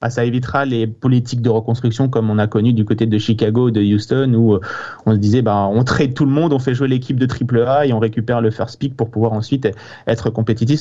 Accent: French